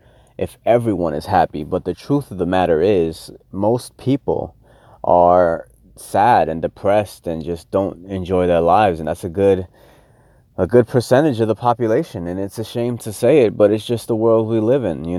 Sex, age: male, 30-49